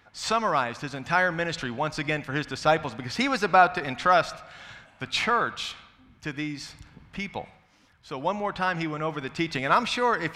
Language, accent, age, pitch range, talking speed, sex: English, American, 40-59, 135-185 Hz, 190 wpm, male